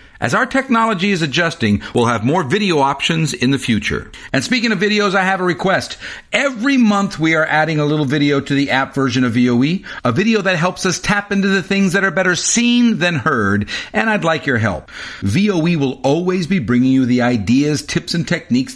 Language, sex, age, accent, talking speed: English, male, 50-69, American, 210 wpm